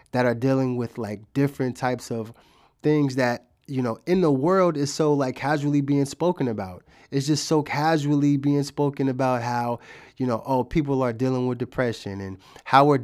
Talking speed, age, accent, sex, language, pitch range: 190 wpm, 20-39, American, male, English, 115-140 Hz